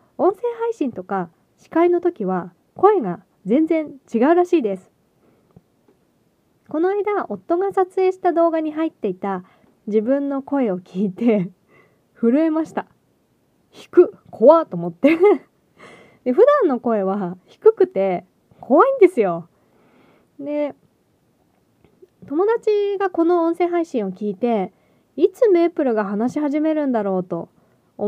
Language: Japanese